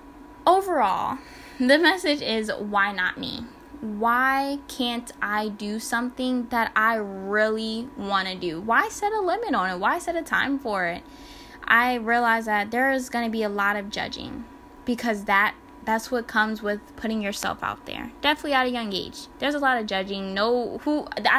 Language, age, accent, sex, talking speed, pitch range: English, 10-29, American, female, 180 wpm, 210-280 Hz